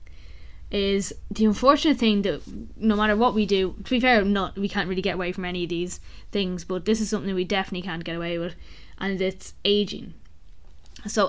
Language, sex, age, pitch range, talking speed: English, female, 10-29, 180-210 Hz, 195 wpm